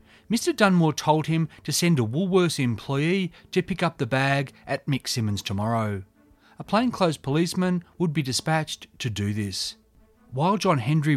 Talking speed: 160 wpm